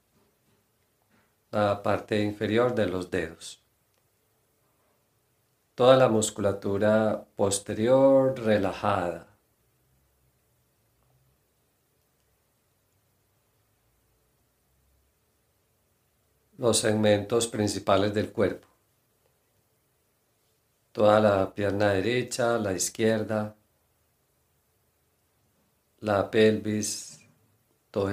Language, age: Spanish, 50-69